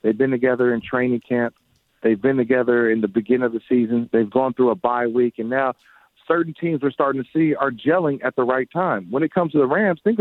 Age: 40-59